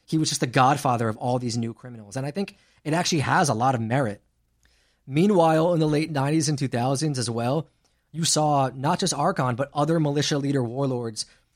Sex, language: male, English